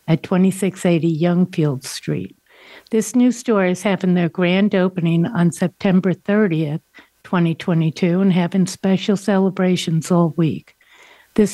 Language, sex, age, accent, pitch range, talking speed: English, female, 60-79, American, 165-195 Hz, 120 wpm